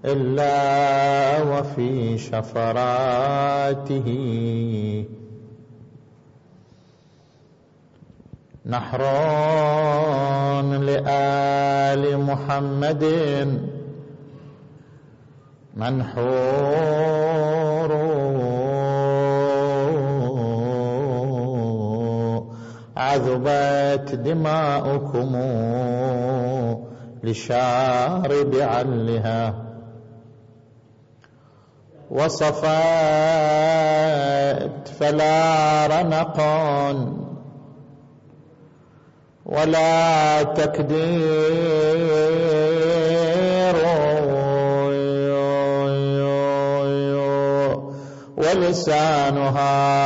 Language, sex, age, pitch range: Arabic, male, 50-69, 135-155 Hz